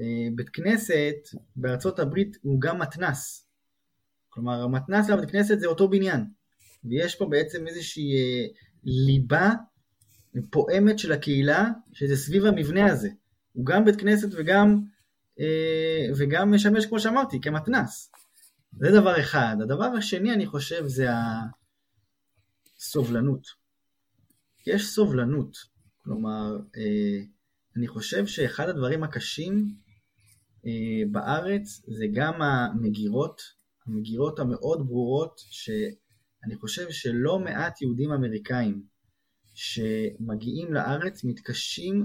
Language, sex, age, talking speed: Hebrew, male, 20-39, 105 wpm